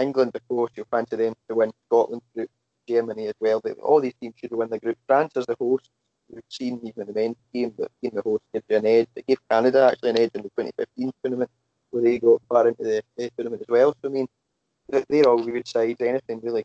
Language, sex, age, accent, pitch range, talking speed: English, male, 20-39, British, 120-155 Hz, 240 wpm